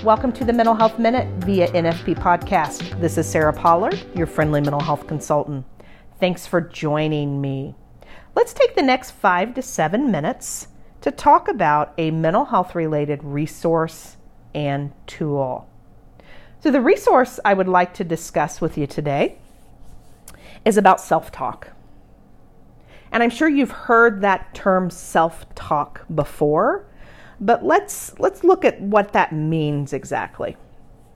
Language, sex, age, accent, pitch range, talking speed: English, female, 40-59, American, 150-225 Hz, 140 wpm